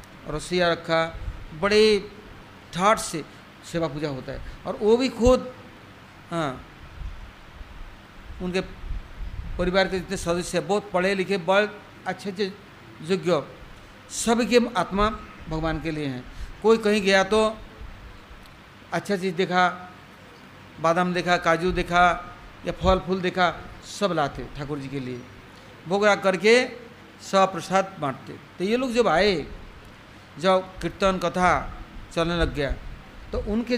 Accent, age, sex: Indian, 60-79, male